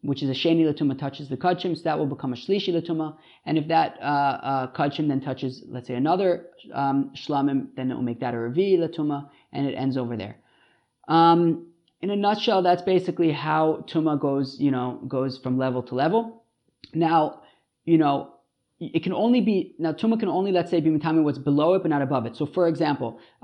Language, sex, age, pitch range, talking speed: English, male, 20-39, 135-175 Hz, 200 wpm